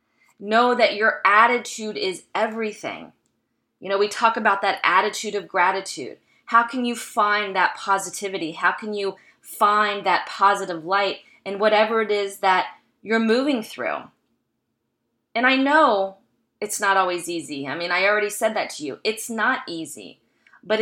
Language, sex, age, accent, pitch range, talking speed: English, female, 20-39, American, 185-220 Hz, 160 wpm